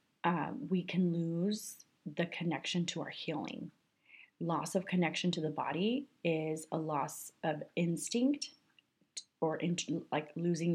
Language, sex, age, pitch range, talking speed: English, female, 30-49, 155-180 Hz, 130 wpm